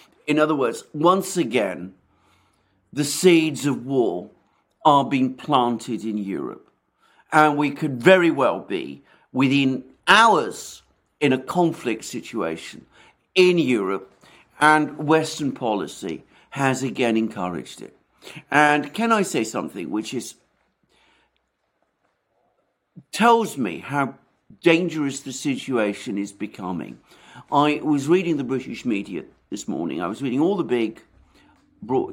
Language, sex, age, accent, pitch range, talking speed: English, male, 50-69, British, 110-155 Hz, 120 wpm